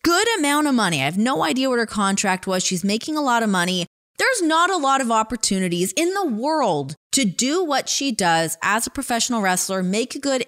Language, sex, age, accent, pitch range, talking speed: English, female, 20-39, American, 170-235 Hz, 225 wpm